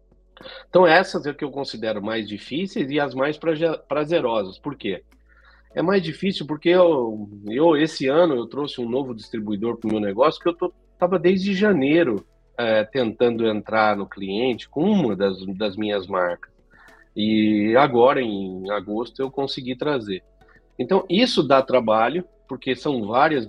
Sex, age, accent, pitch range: male, 40-59, Brazilian, 105-135 Hz